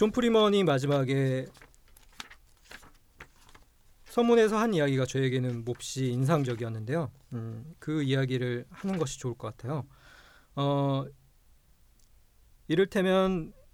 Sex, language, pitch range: male, Korean, 130-175 Hz